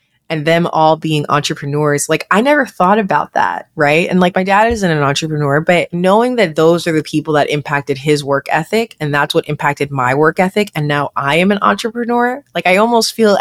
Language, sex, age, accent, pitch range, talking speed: English, female, 20-39, American, 150-190 Hz, 215 wpm